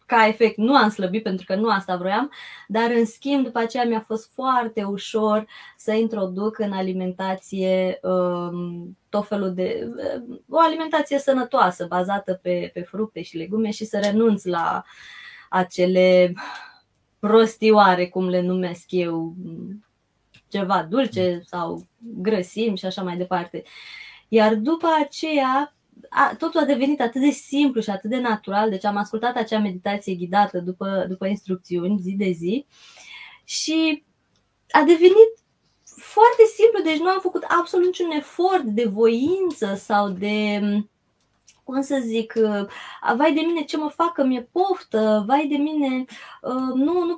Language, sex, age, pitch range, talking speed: Romanian, female, 20-39, 190-280 Hz, 135 wpm